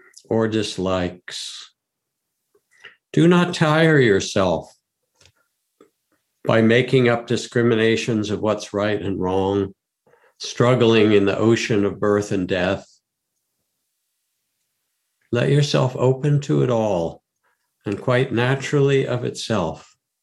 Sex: male